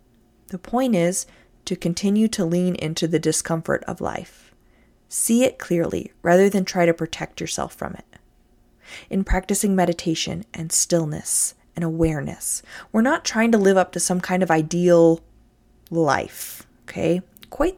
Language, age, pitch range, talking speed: English, 20-39, 160-205 Hz, 150 wpm